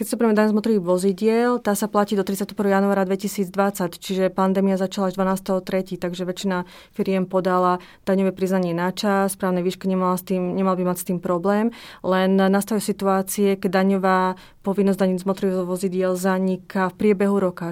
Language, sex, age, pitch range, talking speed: Slovak, female, 30-49, 180-195 Hz, 160 wpm